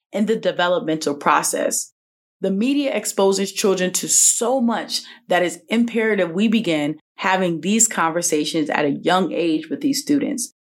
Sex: female